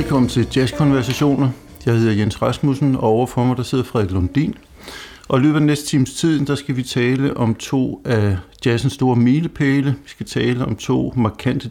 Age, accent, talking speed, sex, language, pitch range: 60-79, native, 190 wpm, male, Danish, 110-135 Hz